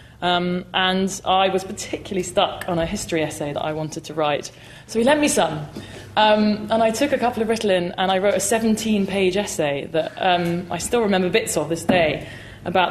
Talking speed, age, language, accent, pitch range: 205 wpm, 20-39, English, British, 170-210 Hz